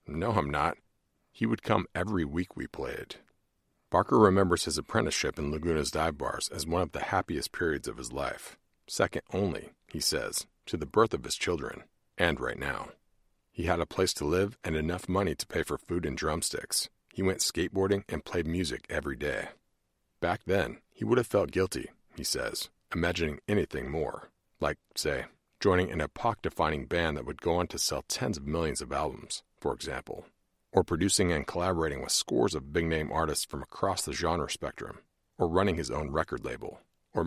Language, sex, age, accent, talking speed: English, male, 50-69, American, 185 wpm